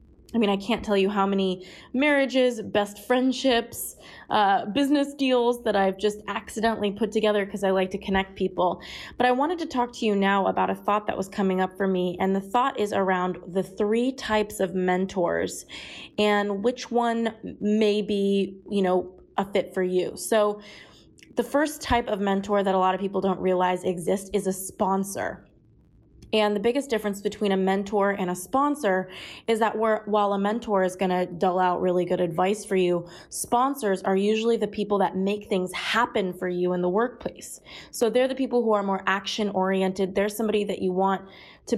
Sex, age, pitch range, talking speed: female, 20-39, 190-225 Hz, 190 wpm